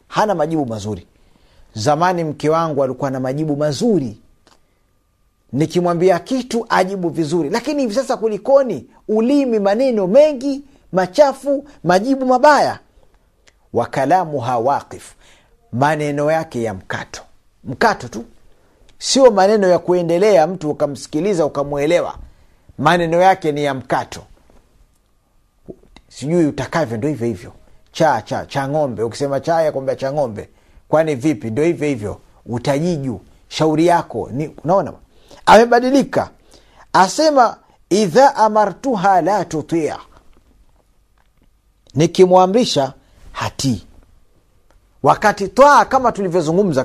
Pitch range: 135-205 Hz